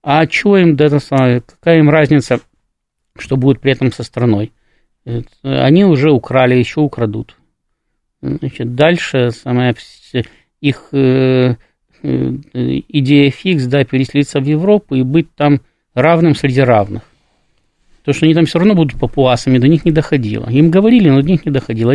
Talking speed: 145 wpm